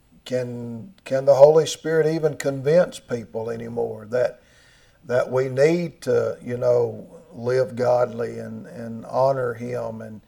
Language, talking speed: English, 135 wpm